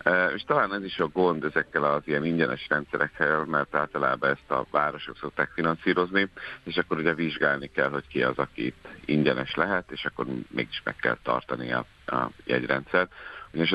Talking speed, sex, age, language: 175 wpm, male, 60-79, Hungarian